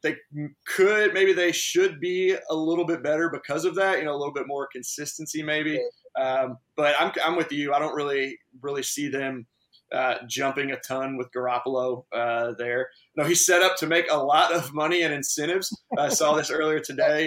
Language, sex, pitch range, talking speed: English, male, 140-170 Hz, 205 wpm